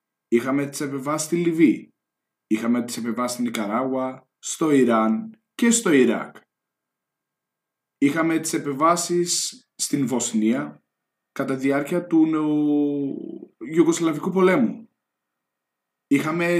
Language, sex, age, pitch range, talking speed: Greek, male, 20-39, 120-175 Hz, 100 wpm